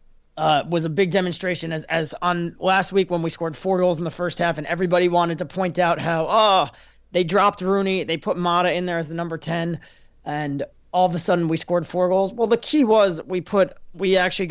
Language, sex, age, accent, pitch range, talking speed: English, male, 30-49, American, 160-185 Hz, 230 wpm